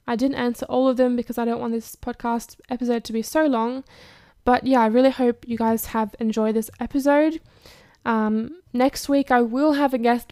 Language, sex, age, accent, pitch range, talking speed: English, female, 10-29, Australian, 225-255 Hz, 210 wpm